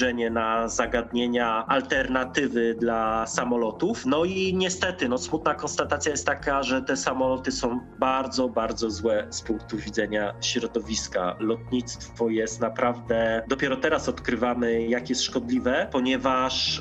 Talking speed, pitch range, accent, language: 120 wpm, 120-140 Hz, native, Polish